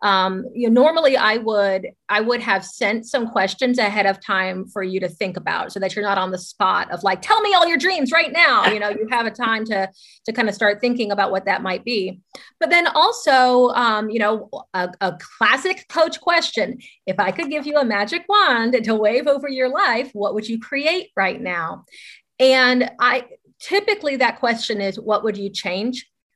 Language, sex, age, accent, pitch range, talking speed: English, female, 30-49, American, 200-270 Hz, 215 wpm